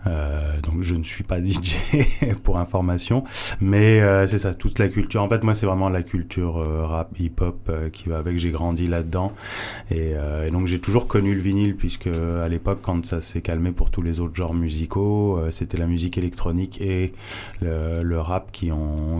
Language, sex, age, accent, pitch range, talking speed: French, male, 20-39, French, 85-95 Hz, 210 wpm